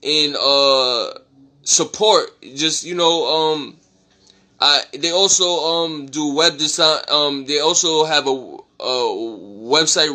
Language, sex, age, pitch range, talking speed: English, male, 10-29, 125-150 Hz, 125 wpm